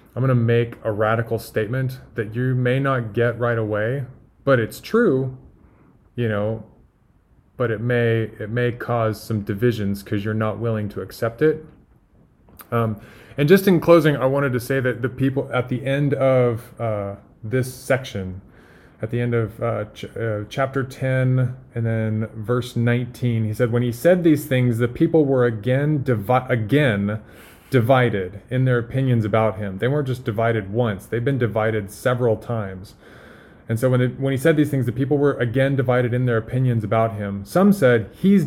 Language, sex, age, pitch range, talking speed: English, male, 20-39, 110-135 Hz, 180 wpm